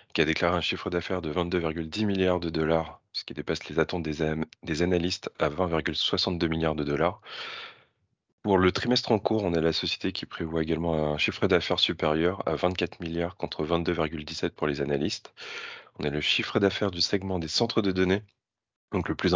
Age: 30-49